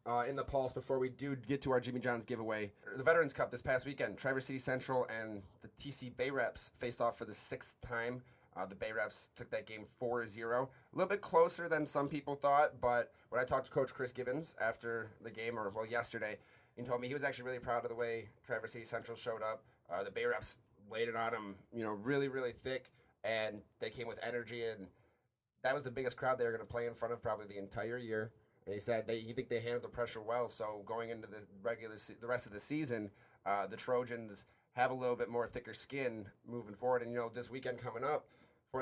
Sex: male